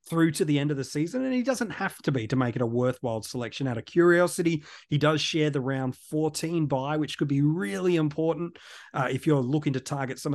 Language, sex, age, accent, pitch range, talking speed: English, male, 30-49, Australian, 125-155 Hz, 240 wpm